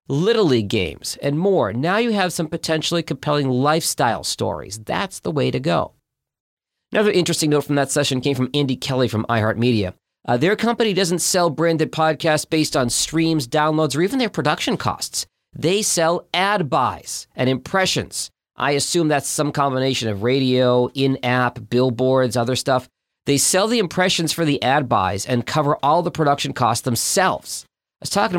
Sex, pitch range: male, 120-160 Hz